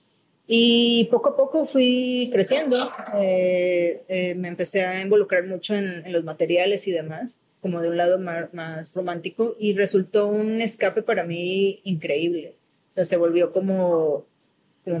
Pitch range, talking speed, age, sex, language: 175-210 Hz, 155 wpm, 30-49, female, Spanish